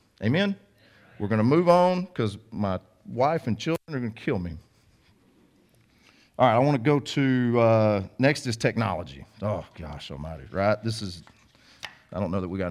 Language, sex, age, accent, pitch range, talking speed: English, male, 40-59, American, 105-145 Hz, 185 wpm